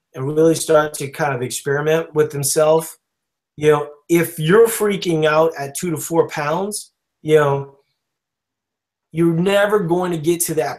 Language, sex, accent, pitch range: English, male, American, 140-180 Hz